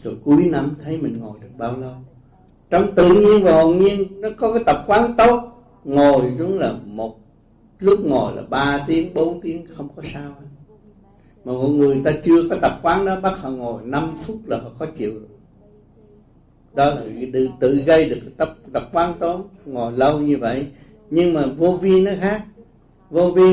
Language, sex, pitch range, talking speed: Vietnamese, male, 125-165 Hz, 200 wpm